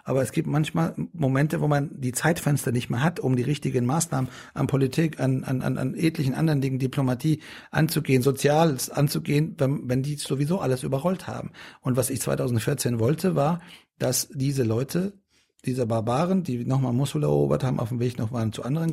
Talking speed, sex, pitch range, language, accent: 185 wpm, male, 120-150 Hz, German, German